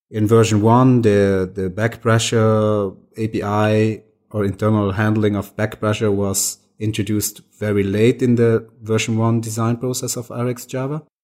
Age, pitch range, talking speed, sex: 30-49, 100-115 Hz, 140 wpm, male